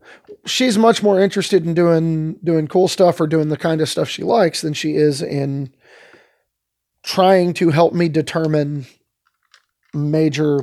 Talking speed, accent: 150 wpm, American